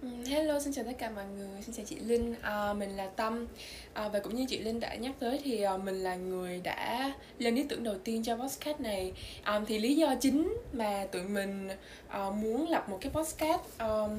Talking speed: 220 wpm